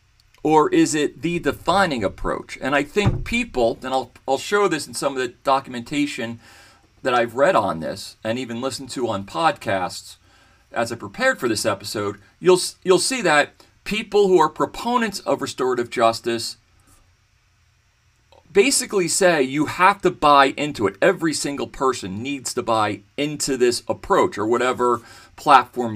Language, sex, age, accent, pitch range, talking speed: English, male, 40-59, American, 115-160 Hz, 155 wpm